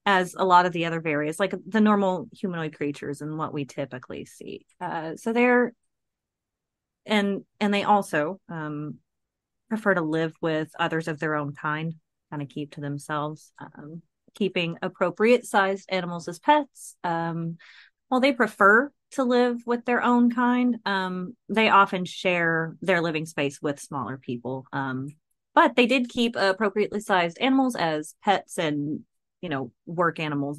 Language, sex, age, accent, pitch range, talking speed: English, female, 30-49, American, 150-210 Hz, 160 wpm